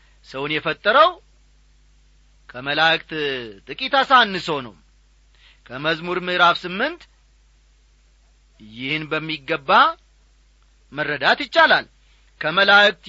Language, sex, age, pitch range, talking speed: Amharic, male, 40-59, 140-240 Hz, 65 wpm